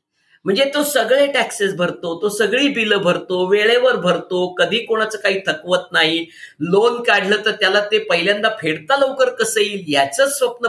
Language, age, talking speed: Marathi, 50-69, 105 wpm